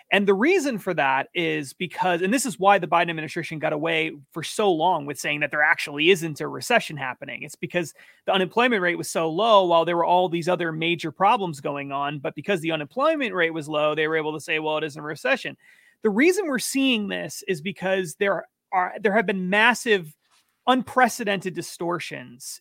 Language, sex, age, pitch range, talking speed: English, male, 30-49, 165-215 Hz, 210 wpm